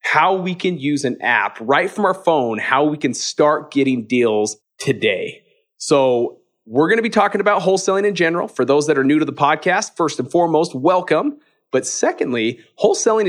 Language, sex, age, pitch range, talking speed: English, male, 30-49, 135-200 Hz, 190 wpm